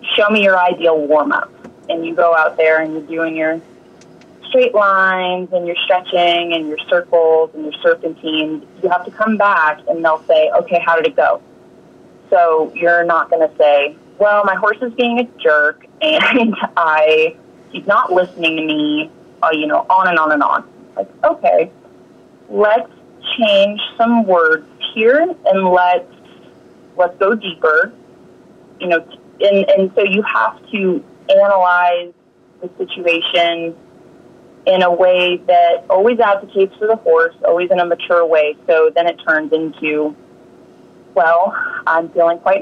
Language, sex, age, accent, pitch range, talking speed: English, female, 30-49, American, 160-205 Hz, 160 wpm